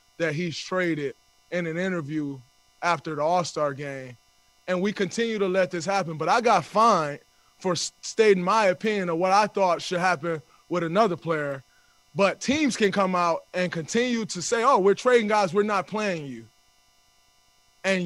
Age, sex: 20-39, male